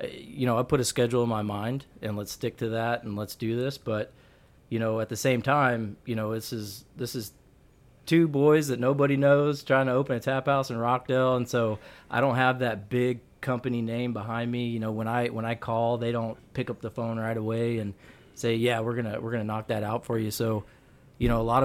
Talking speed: 240 wpm